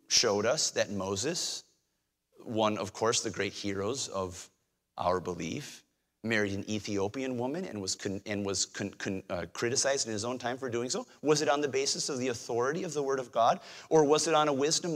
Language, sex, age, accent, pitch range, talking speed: English, male, 30-49, American, 110-165 Hz, 210 wpm